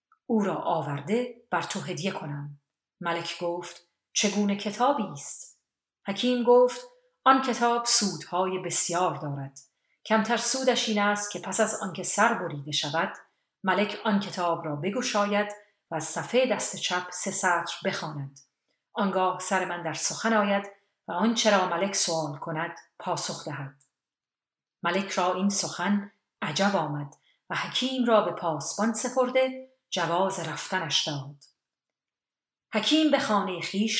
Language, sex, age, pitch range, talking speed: Persian, female, 40-59, 170-220 Hz, 135 wpm